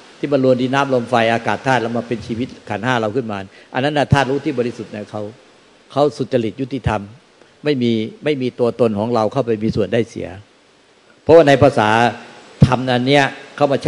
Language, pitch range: Thai, 110-135 Hz